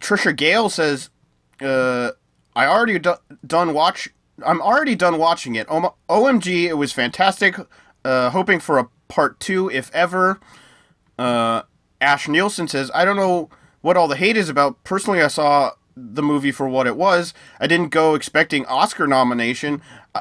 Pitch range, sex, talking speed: 135-175 Hz, male, 165 wpm